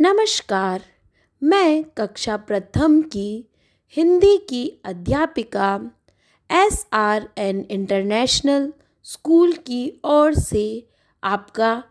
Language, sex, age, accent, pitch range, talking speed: English, female, 20-39, Indian, 205-305 Hz, 85 wpm